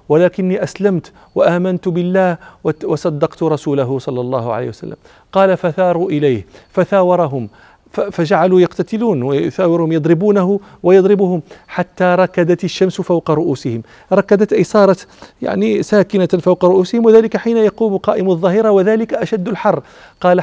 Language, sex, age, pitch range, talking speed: English, male, 40-59, 155-195 Hz, 120 wpm